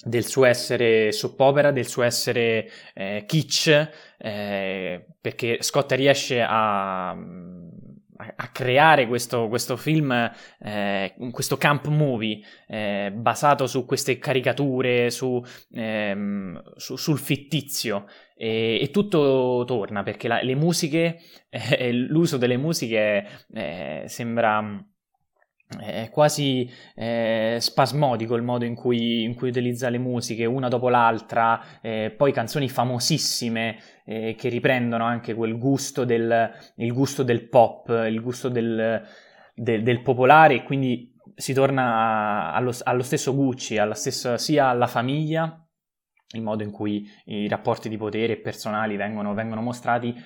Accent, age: native, 20-39